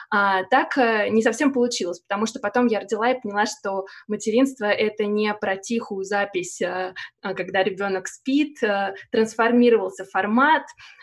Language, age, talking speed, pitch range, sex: Russian, 20-39, 125 wpm, 195-230 Hz, female